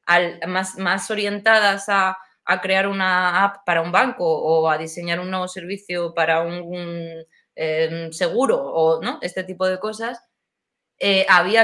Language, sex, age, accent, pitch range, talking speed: Spanish, female, 20-39, Spanish, 175-210 Hz, 160 wpm